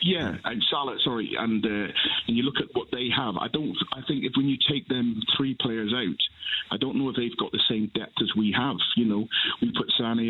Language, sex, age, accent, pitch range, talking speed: English, male, 40-59, British, 105-120 Hz, 245 wpm